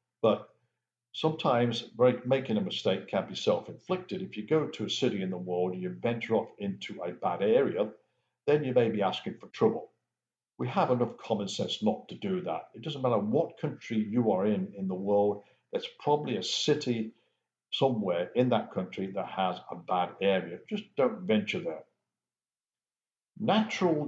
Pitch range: 100-130 Hz